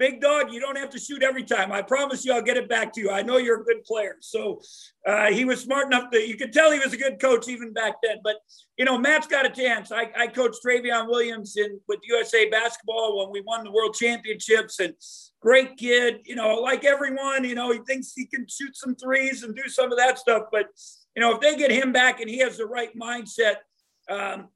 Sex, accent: male, American